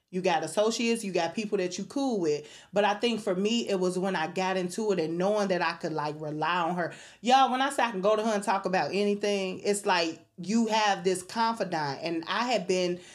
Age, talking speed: 30-49, 245 wpm